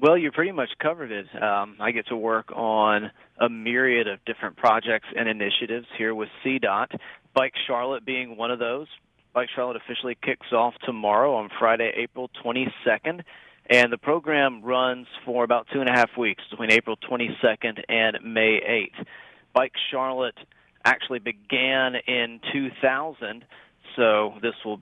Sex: male